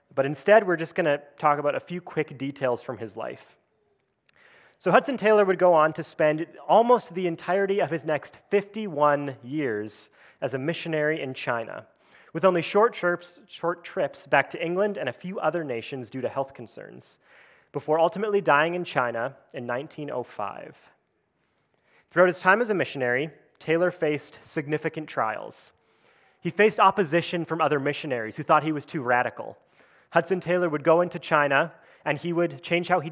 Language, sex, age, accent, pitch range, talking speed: English, male, 30-49, American, 140-180 Hz, 170 wpm